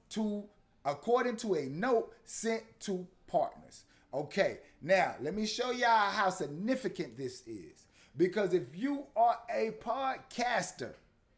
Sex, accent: male, American